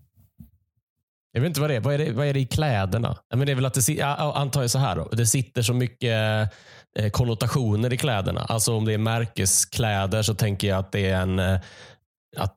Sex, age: male, 20-39